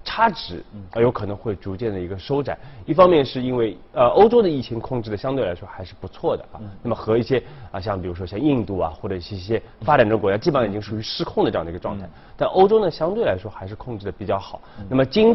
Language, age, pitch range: Chinese, 30-49, 95-125 Hz